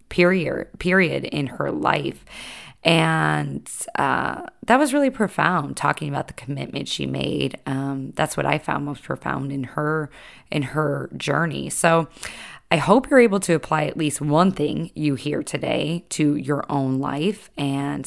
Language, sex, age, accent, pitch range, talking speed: English, female, 20-39, American, 140-165 Hz, 160 wpm